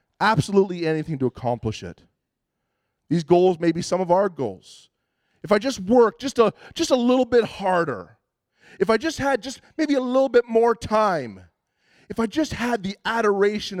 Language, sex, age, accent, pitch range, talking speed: English, male, 30-49, American, 135-195 Hz, 175 wpm